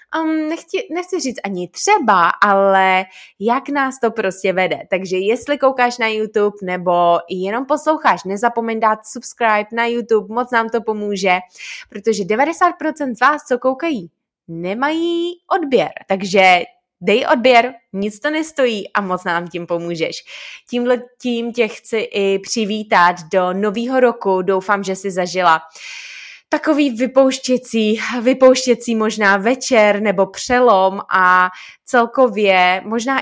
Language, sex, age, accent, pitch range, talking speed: Czech, female, 20-39, native, 190-255 Hz, 125 wpm